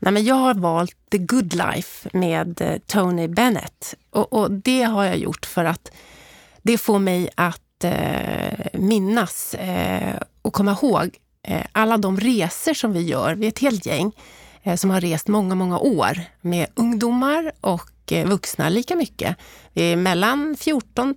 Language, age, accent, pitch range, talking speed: Swedish, 30-49, native, 175-230 Hz, 165 wpm